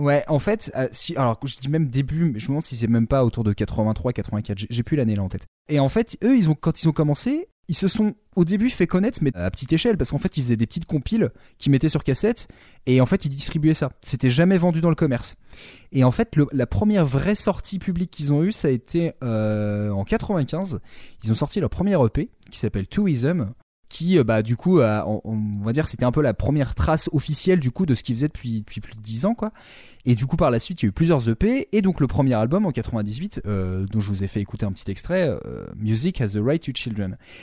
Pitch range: 115-170 Hz